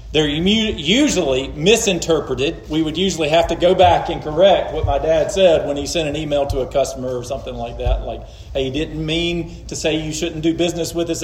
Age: 40-59